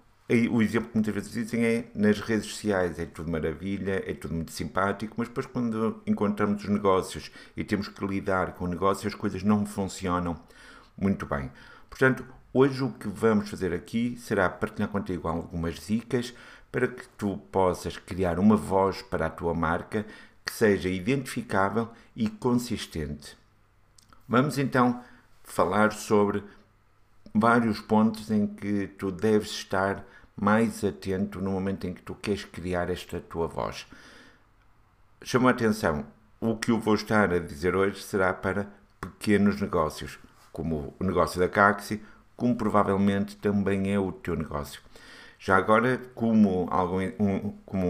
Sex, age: male, 60-79